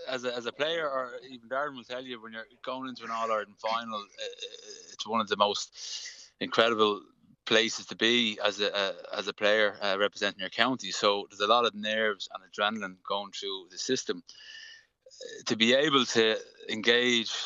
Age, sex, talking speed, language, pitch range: 20-39, male, 195 wpm, English, 100-115 Hz